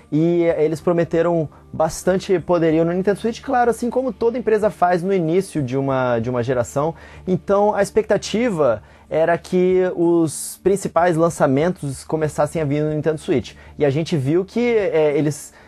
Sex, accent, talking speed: male, Brazilian, 160 wpm